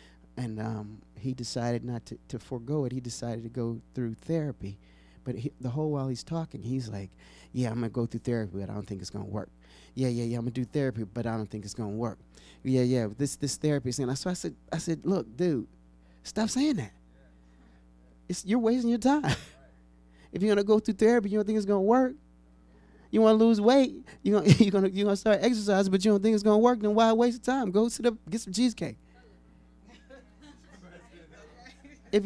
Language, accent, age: English, American, 30-49